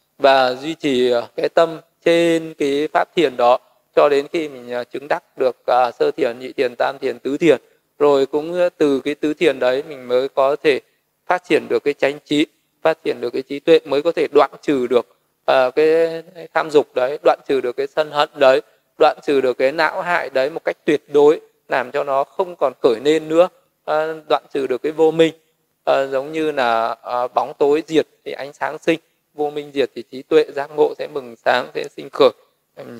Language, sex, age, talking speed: Vietnamese, male, 20-39, 210 wpm